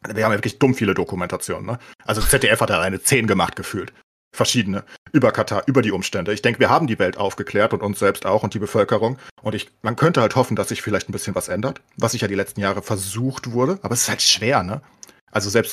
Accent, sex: German, male